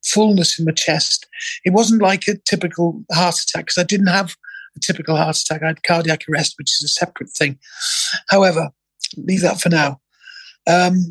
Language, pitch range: English, 170-205 Hz